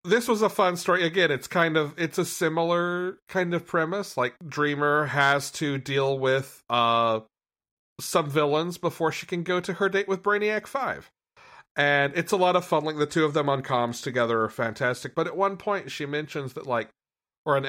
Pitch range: 120-165 Hz